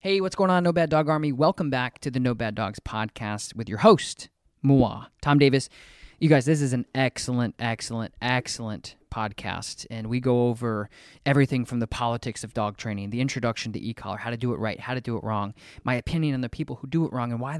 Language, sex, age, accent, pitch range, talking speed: English, male, 20-39, American, 110-135 Hz, 230 wpm